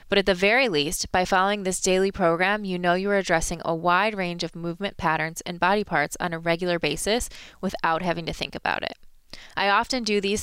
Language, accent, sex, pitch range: English, American, female, 170-200 Hz